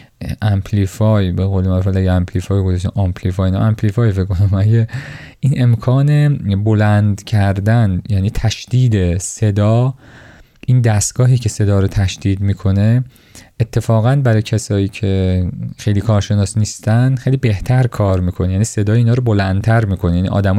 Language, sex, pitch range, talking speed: Persian, male, 100-125 Hz, 115 wpm